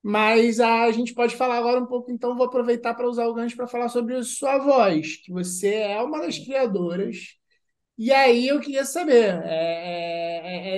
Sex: male